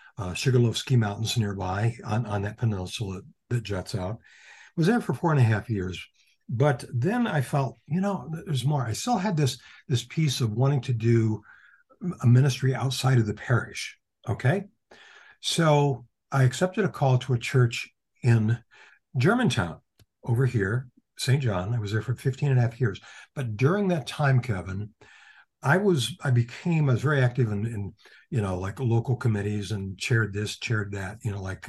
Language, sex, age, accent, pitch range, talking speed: English, male, 60-79, American, 110-135 Hz, 185 wpm